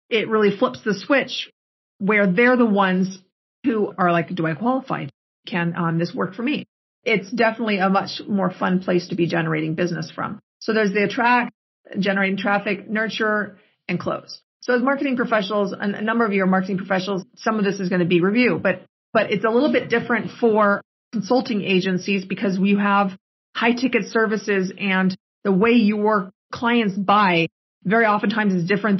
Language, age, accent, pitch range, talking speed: English, 40-59, American, 190-225 Hz, 180 wpm